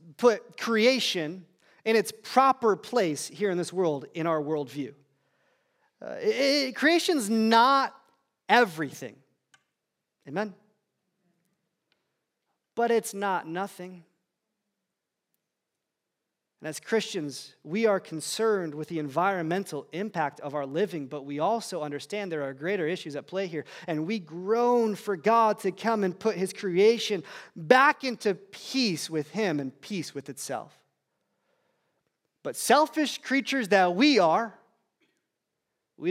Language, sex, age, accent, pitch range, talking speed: English, male, 30-49, American, 145-205 Hz, 120 wpm